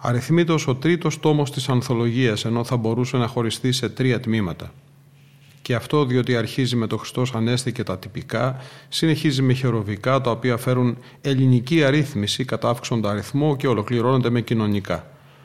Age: 30-49